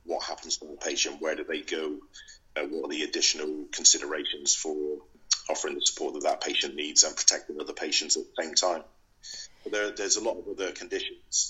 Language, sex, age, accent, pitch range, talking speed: English, male, 30-49, British, 330-380 Hz, 205 wpm